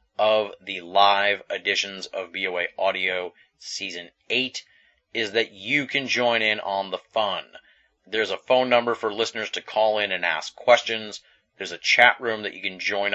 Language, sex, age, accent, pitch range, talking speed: English, male, 30-49, American, 95-115 Hz, 175 wpm